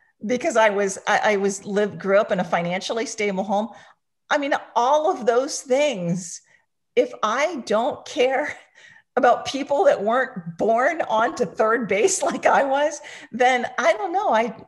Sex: female